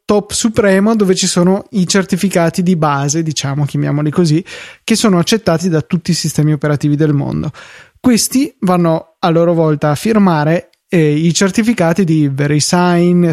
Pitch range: 155-190 Hz